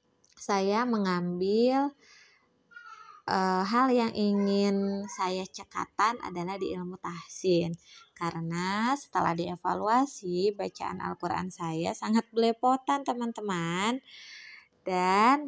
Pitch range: 180-245 Hz